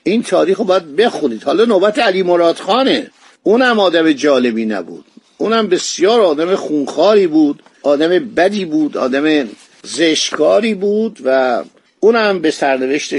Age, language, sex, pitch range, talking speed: 50-69, Persian, male, 135-195 Hz, 125 wpm